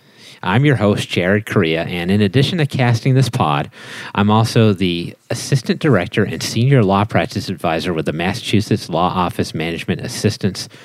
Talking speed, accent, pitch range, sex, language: 160 wpm, American, 95-125 Hz, male, English